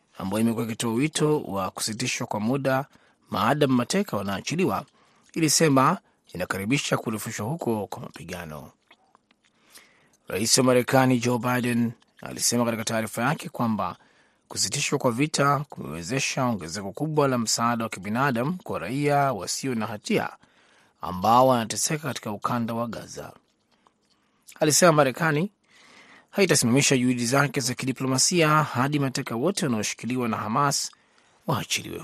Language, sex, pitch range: Swahili, male, 120-160 Hz